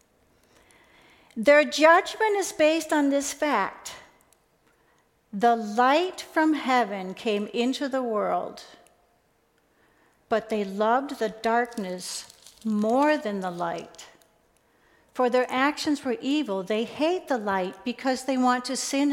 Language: English